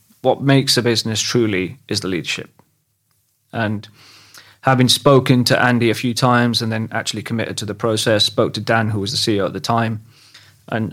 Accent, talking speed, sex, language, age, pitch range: British, 185 wpm, male, English, 30-49, 110-130 Hz